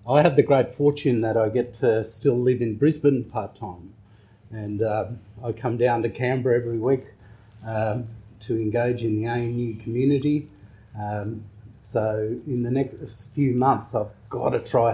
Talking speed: 170 wpm